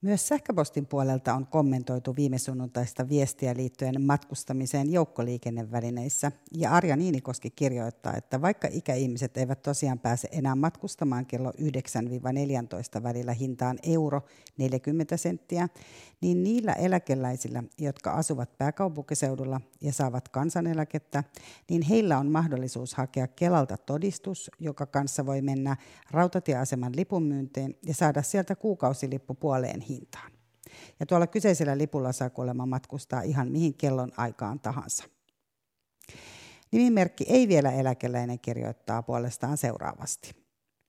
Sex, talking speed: female, 110 wpm